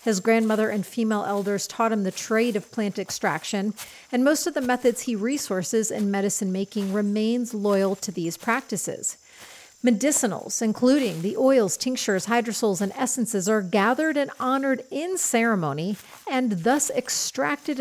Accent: American